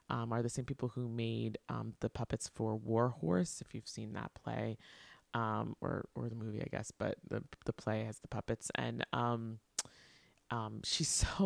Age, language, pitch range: 20-39, English, 110-130 Hz